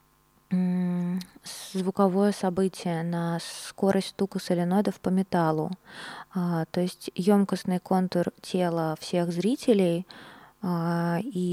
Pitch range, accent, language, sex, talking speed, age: 175-195 Hz, native, Russian, female, 85 wpm, 20-39